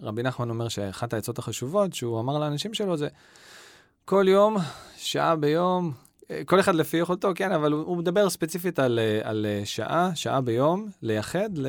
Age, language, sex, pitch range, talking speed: 20-39, Hebrew, male, 115-165 Hz, 160 wpm